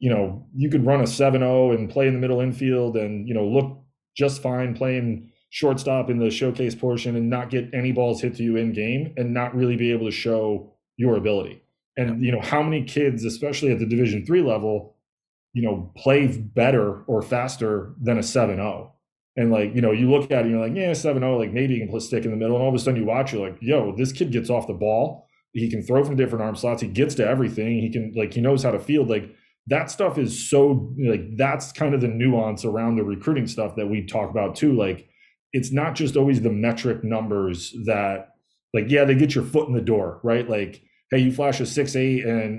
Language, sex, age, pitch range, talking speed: English, male, 30-49, 110-130 Hz, 240 wpm